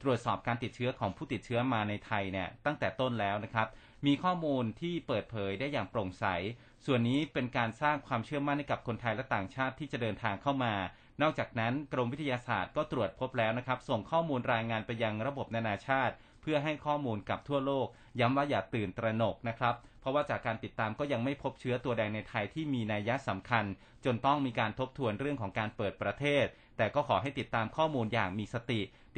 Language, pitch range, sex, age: Thai, 110-140 Hz, male, 30-49